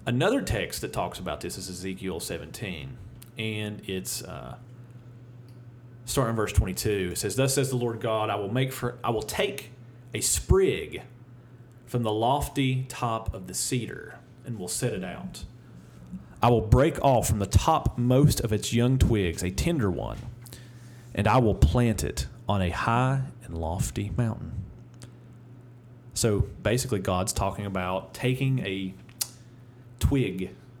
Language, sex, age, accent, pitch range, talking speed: English, male, 40-59, American, 105-125 Hz, 150 wpm